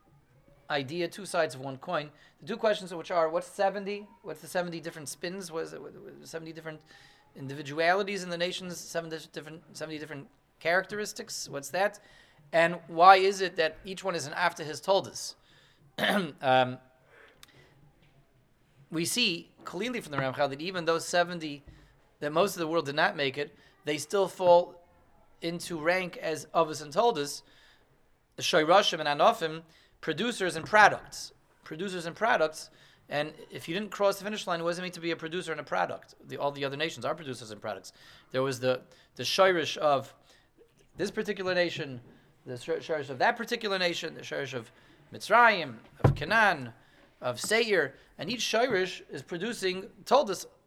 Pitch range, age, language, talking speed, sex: 145-190 Hz, 30-49, English, 165 wpm, male